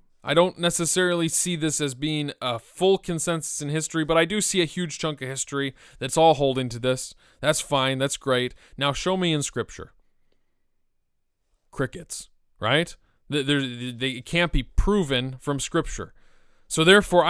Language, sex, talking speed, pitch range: English, male, 160 wpm, 125-160 Hz